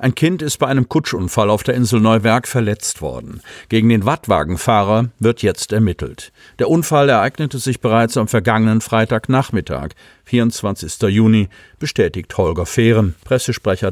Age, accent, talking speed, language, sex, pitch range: 50-69, German, 140 wpm, German, male, 100-125 Hz